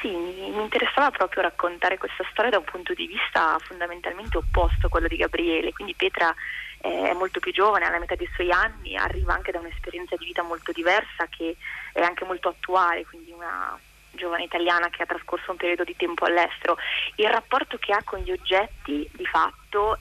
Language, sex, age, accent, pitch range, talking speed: Italian, female, 20-39, native, 175-215 Hz, 190 wpm